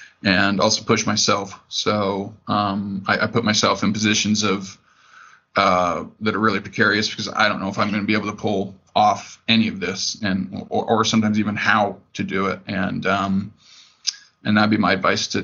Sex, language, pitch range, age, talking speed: male, English, 105-115 Hz, 20-39, 200 wpm